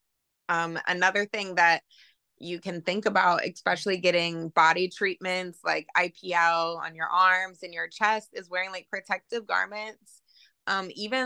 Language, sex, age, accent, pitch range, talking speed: English, female, 20-39, American, 175-215 Hz, 145 wpm